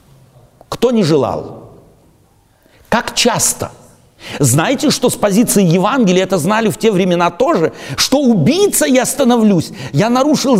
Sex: male